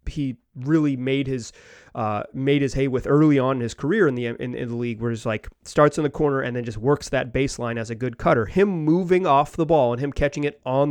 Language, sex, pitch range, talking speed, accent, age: English, male, 115-155 Hz, 260 wpm, American, 30-49